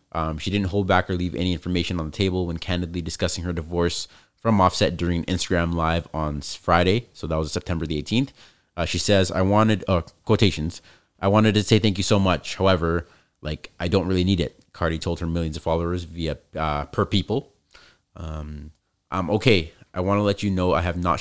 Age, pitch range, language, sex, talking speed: 30-49, 85-100 Hz, English, male, 210 wpm